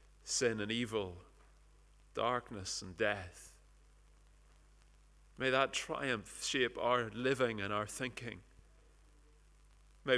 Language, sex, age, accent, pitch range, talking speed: English, male, 30-49, British, 80-130 Hz, 95 wpm